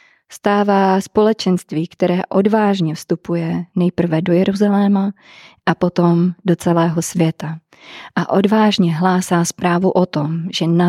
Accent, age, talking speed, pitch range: native, 20-39, 115 wpm, 170-195 Hz